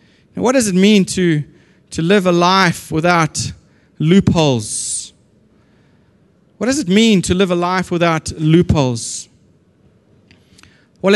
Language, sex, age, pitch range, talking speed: English, male, 30-49, 165-220 Hz, 120 wpm